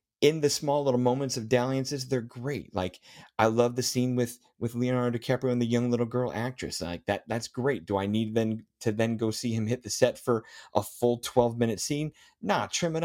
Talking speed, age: 220 wpm, 30-49